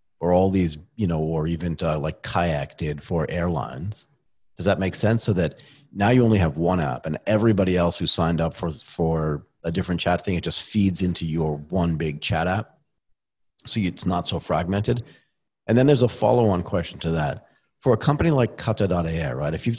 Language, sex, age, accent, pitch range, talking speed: English, male, 40-59, American, 85-105 Hz, 205 wpm